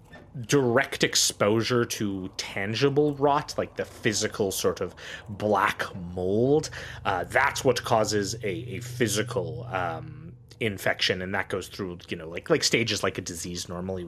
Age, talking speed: 30-49, 145 wpm